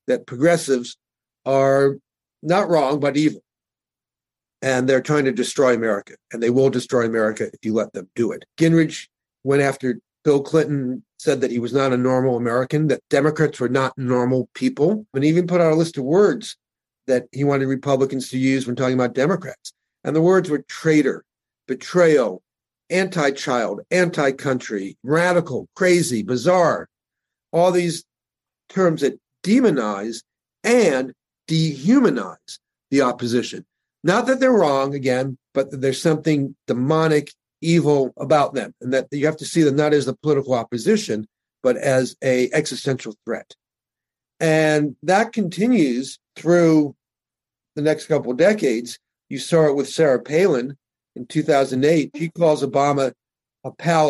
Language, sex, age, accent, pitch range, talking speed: English, male, 50-69, American, 130-160 Hz, 145 wpm